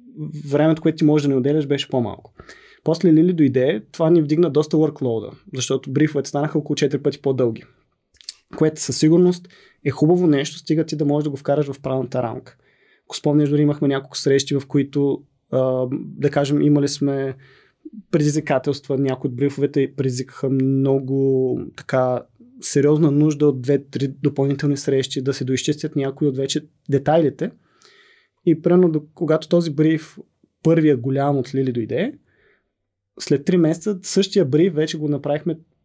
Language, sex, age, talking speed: Bulgarian, male, 20-39, 155 wpm